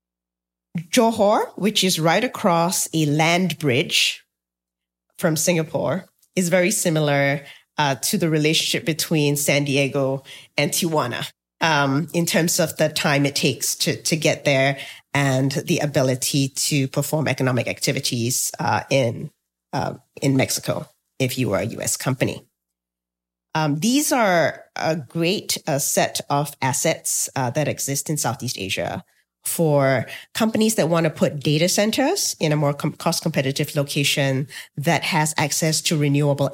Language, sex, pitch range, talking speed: English, female, 135-170 Hz, 140 wpm